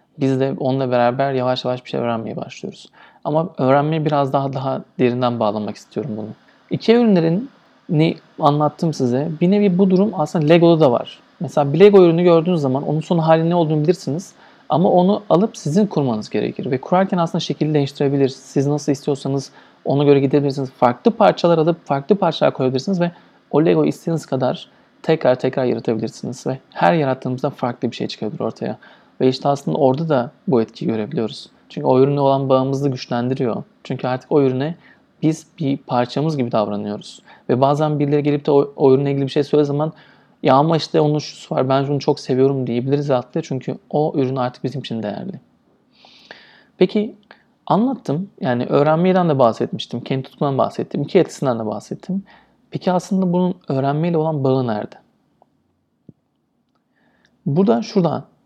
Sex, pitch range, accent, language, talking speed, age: male, 130-165 Hz, native, Turkish, 165 wpm, 40-59